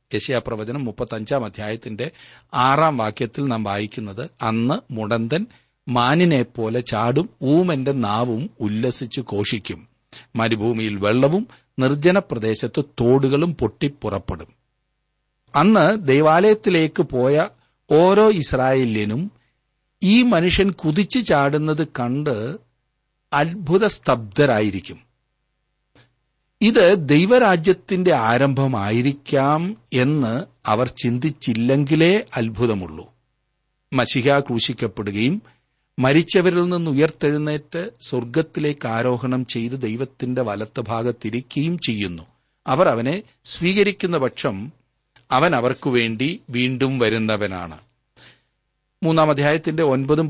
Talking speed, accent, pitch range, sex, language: 75 wpm, native, 120-155 Hz, male, Malayalam